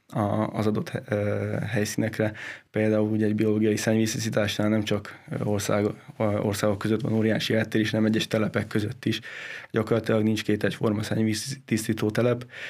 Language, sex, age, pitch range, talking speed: Hungarian, male, 20-39, 105-115 Hz, 130 wpm